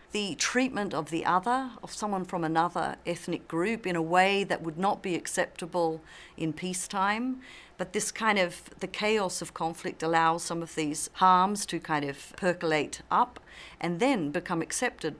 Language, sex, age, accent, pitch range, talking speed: English, female, 50-69, Australian, 155-180 Hz, 170 wpm